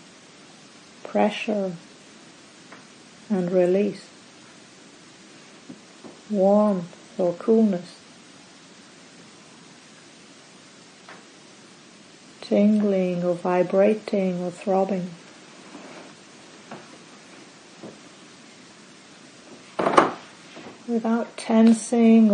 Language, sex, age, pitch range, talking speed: English, female, 50-69, 185-220 Hz, 35 wpm